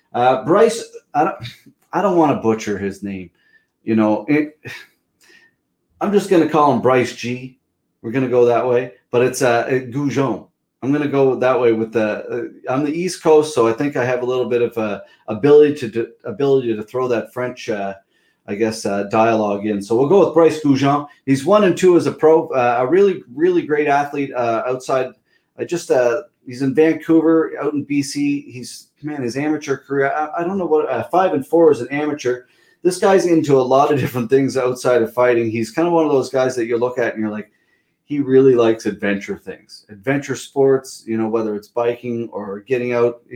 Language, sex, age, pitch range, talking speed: English, male, 30-49, 115-145 Hz, 215 wpm